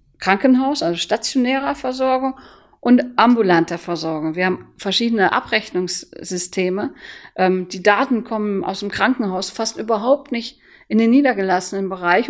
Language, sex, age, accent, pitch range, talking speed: German, female, 50-69, German, 185-235 Hz, 115 wpm